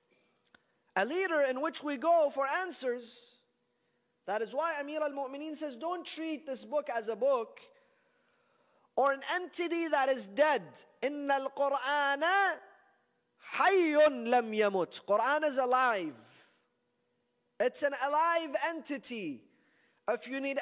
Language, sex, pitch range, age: English, male, 240-320 Hz, 30-49